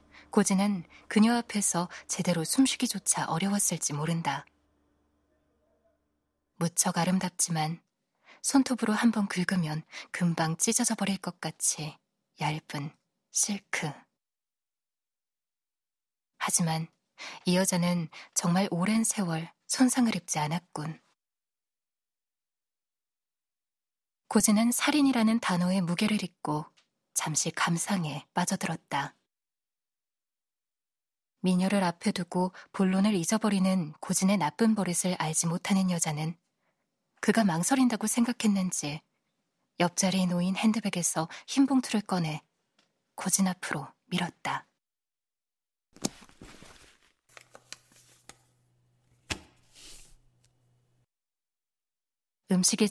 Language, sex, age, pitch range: Korean, female, 20-39, 160-205 Hz